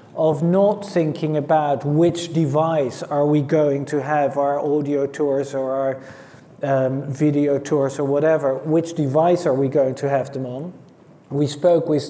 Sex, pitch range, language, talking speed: male, 135-160 Hz, English, 165 wpm